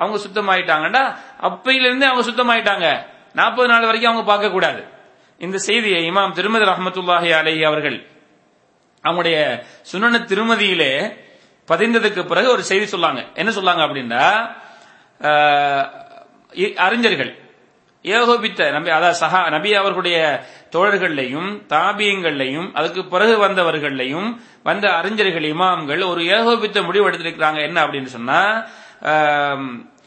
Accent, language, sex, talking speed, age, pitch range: Indian, English, male, 105 wpm, 30-49, 175-225 Hz